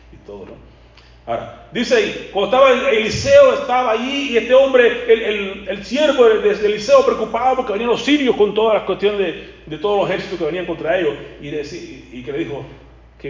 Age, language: 40-59, Spanish